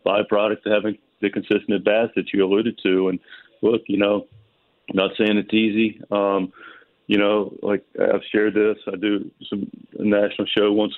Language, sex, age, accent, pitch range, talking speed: English, male, 40-59, American, 100-110 Hz, 175 wpm